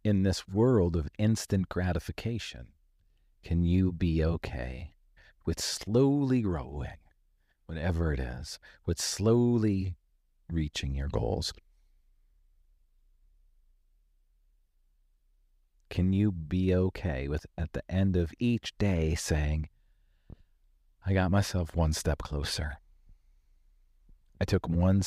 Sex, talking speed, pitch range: male, 100 wpm, 70-95 Hz